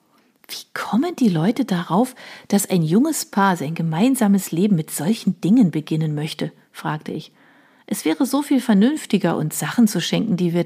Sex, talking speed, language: female, 170 wpm, German